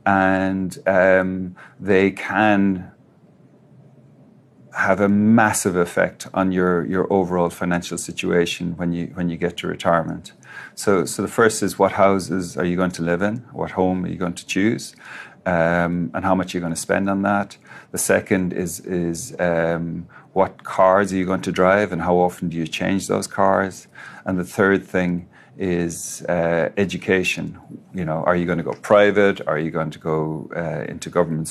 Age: 40-59